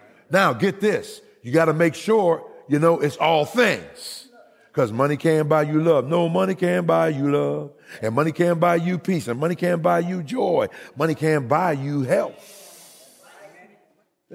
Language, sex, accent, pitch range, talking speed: English, male, American, 120-175 Hz, 175 wpm